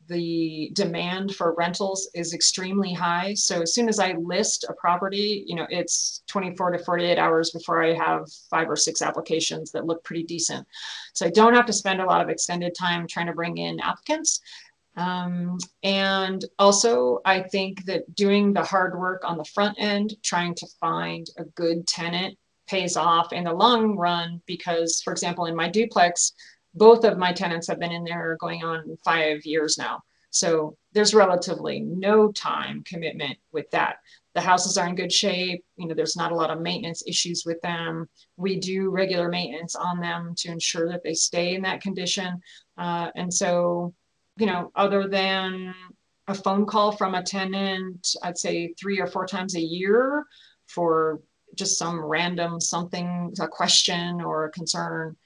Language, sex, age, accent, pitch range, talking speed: English, female, 30-49, American, 170-195 Hz, 180 wpm